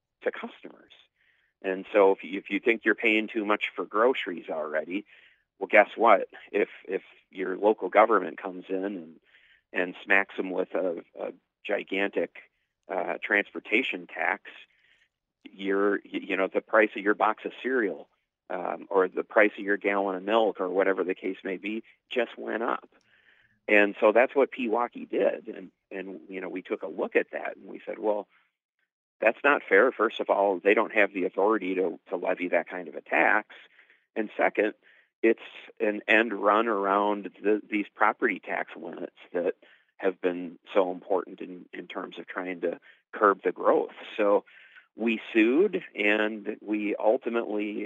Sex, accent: male, American